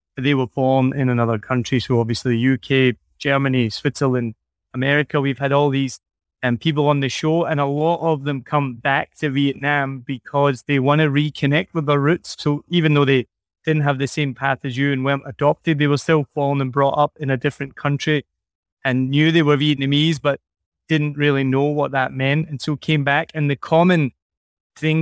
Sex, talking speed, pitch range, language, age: male, 200 wpm, 130-150 Hz, English, 20-39